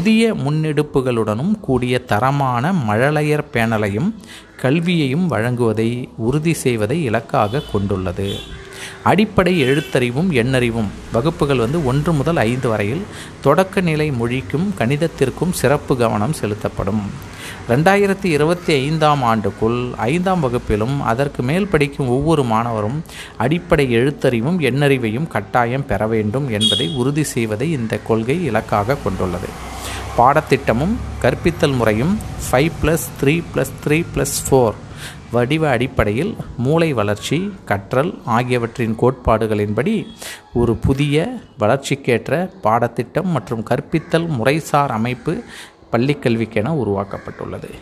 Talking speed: 90 wpm